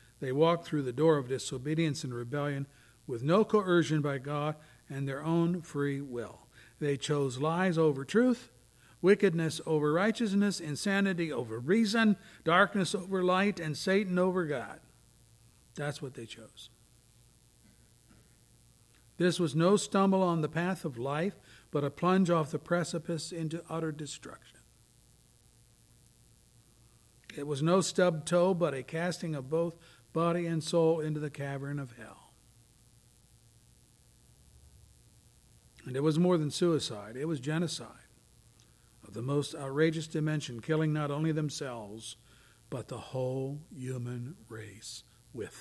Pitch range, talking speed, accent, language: 120-165 Hz, 135 wpm, American, English